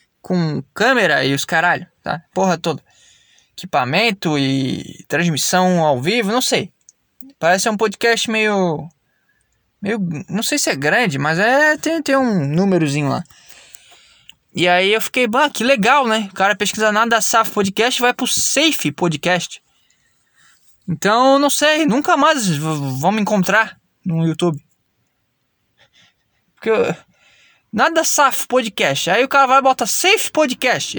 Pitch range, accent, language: 180-270 Hz, Brazilian, Portuguese